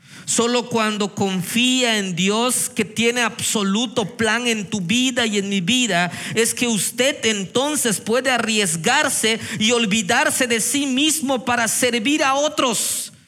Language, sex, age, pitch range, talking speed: Spanish, male, 40-59, 185-250 Hz, 140 wpm